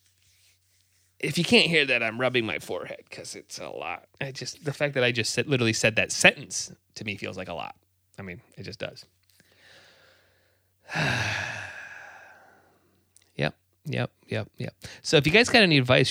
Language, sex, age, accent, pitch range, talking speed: English, male, 20-39, American, 105-155 Hz, 175 wpm